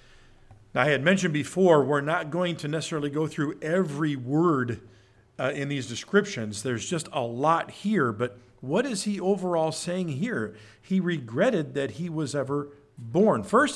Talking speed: 160 wpm